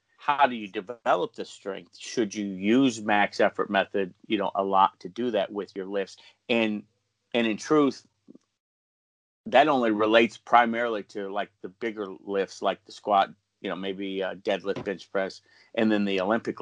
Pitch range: 105-135 Hz